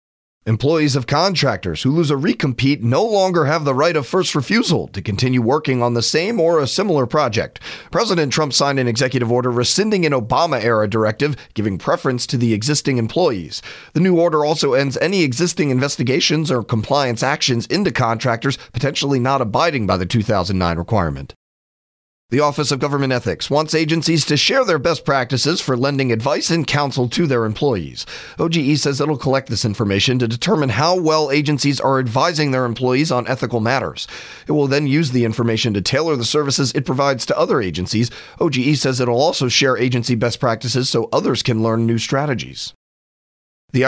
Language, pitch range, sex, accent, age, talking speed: English, 120-150 Hz, male, American, 40-59, 175 wpm